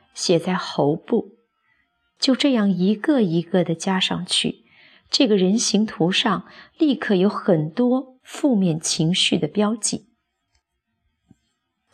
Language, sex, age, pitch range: Chinese, female, 30-49, 170-230 Hz